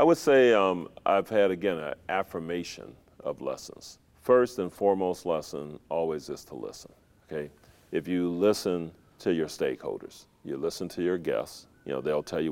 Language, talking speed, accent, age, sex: English, 175 wpm, American, 40-59, male